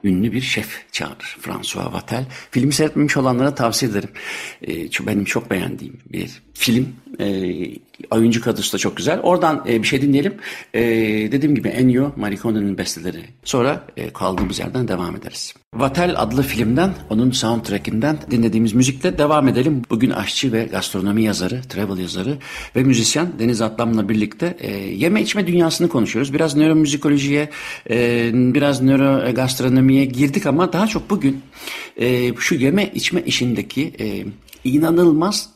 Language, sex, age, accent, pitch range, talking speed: Turkish, male, 60-79, native, 105-140 Hz, 145 wpm